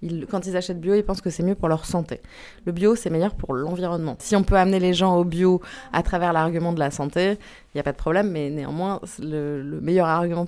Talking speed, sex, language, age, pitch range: 260 wpm, female, French, 20-39, 150-185 Hz